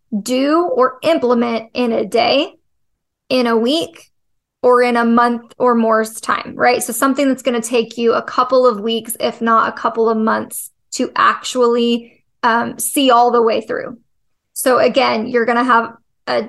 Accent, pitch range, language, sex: American, 230-255 Hz, English, female